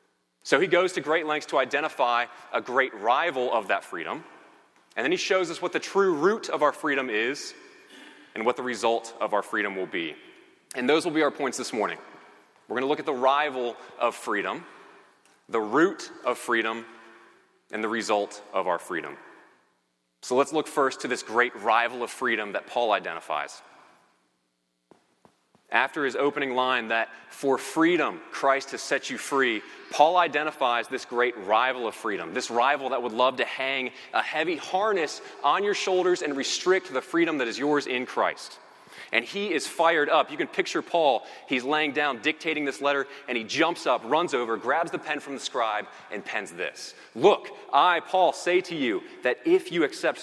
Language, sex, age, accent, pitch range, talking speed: English, male, 30-49, American, 120-180 Hz, 190 wpm